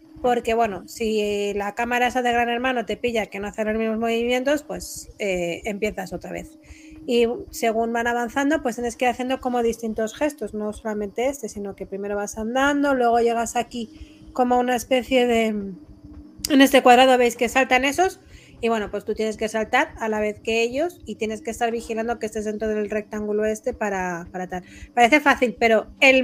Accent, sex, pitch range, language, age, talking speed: Spanish, female, 210-255 Hz, Spanish, 30-49, 195 wpm